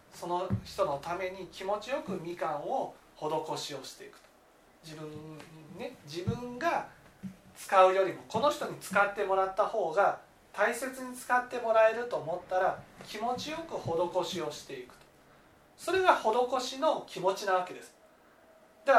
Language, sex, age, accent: Japanese, male, 40-59, native